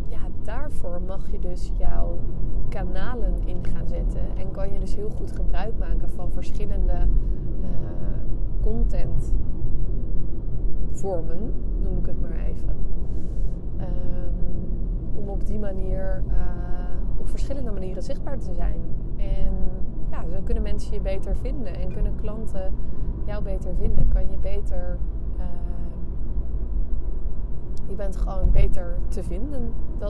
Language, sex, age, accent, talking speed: Dutch, female, 20-39, Dutch, 130 wpm